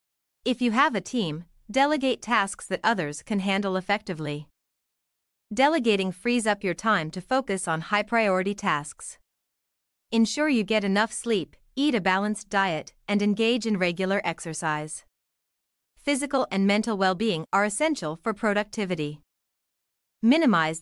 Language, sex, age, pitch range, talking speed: Vietnamese, female, 30-49, 175-230 Hz, 130 wpm